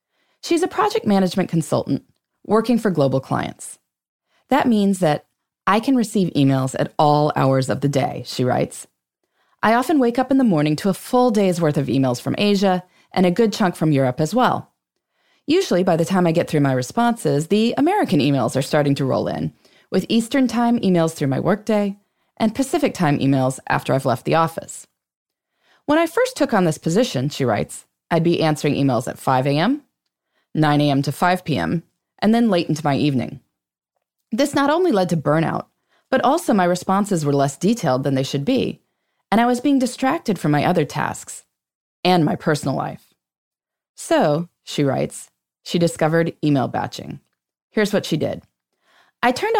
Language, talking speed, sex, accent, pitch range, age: English, 185 wpm, female, American, 145-230 Hz, 20-39